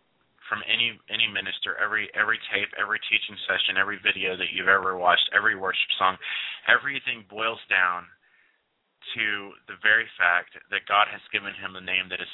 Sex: male